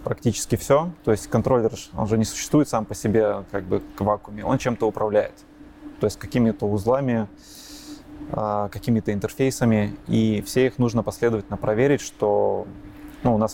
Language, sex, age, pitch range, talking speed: Russian, male, 20-39, 105-125 Hz, 160 wpm